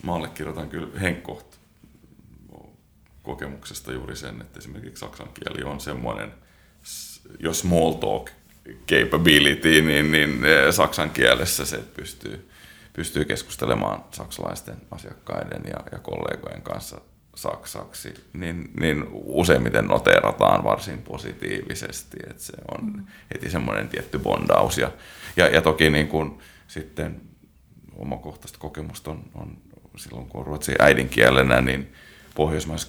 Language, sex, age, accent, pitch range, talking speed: Finnish, male, 30-49, native, 70-85 Hz, 115 wpm